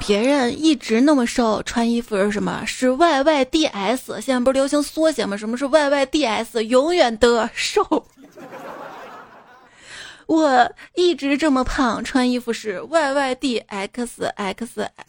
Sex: female